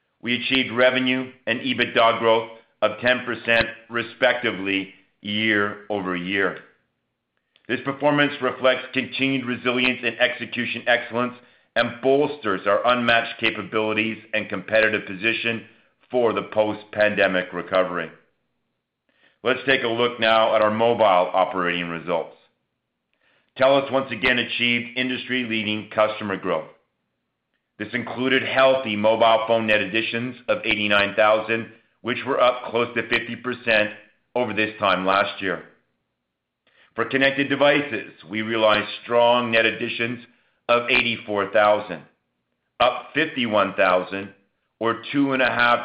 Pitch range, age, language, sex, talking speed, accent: 105-125 Hz, 50-69, English, male, 115 wpm, American